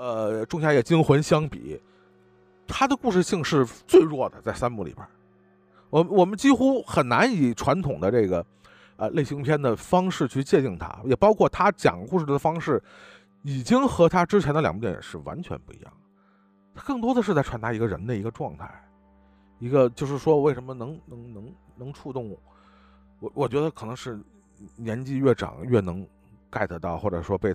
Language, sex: Chinese, male